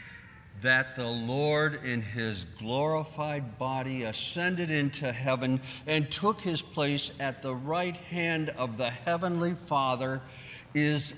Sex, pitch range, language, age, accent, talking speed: male, 125-155 Hz, English, 50-69, American, 125 wpm